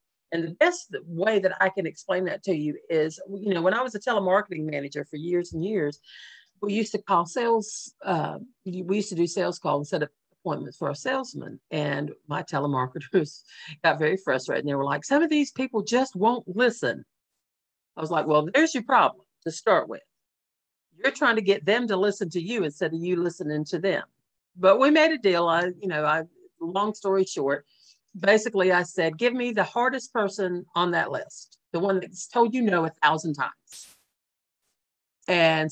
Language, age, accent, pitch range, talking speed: English, 50-69, American, 170-235 Hz, 195 wpm